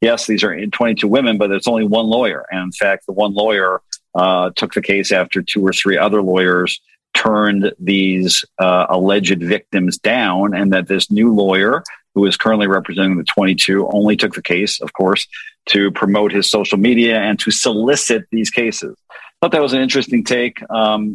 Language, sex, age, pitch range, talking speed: English, male, 50-69, 100-115 Hz, 190 wpm